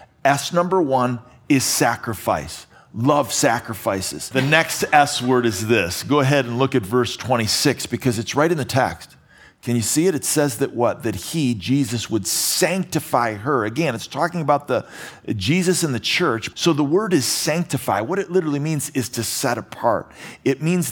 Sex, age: male, 40-59